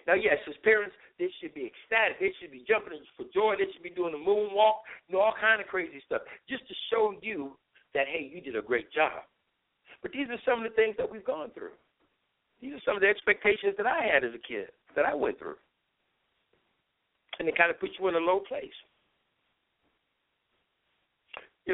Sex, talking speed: male, 210 wpm